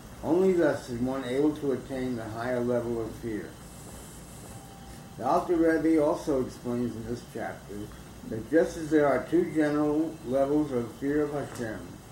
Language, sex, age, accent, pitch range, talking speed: English, male, 60-79, American, 120-150 Hz, 160 wpm